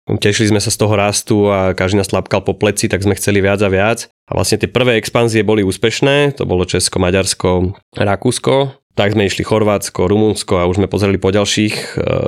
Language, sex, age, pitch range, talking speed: Slovak, male, 20-39, 95-115 Hz, 205 wpm